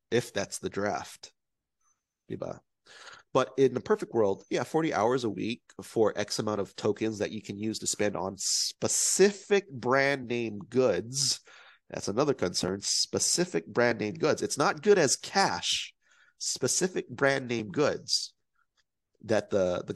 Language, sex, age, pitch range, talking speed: Filipino, male, 30-49, 110-135 Hz, 145 wpm